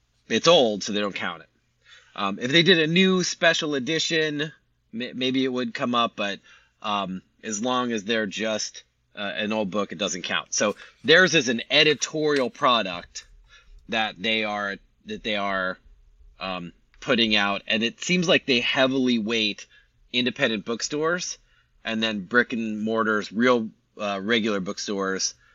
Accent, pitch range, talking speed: American, 100-120 Hz, 160 wpm